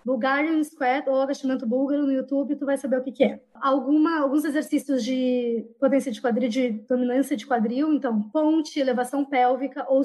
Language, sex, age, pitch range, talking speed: Portuguese, female, 20-39, 255-290 Hz, 175 wpm